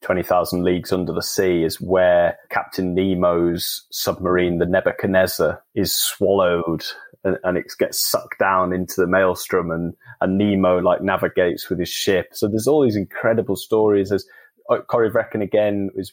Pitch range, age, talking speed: 90-100 Hz, 20-39, 160 wpm